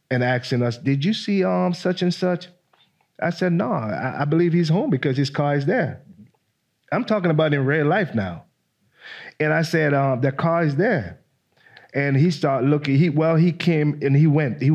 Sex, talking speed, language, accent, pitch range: male, 205 wpm, English, American, 125-165 Hz